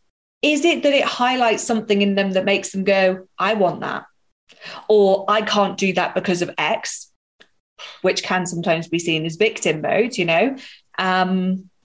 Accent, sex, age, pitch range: British, female, 30-49, 185-245 Hz